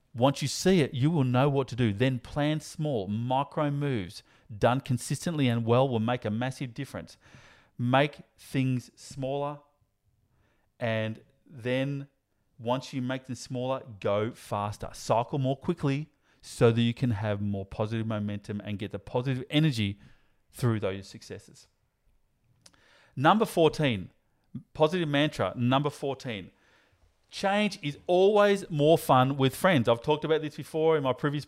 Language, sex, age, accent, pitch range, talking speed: English, male, 30-49, Australian, 120-150 Hz, 145 wpm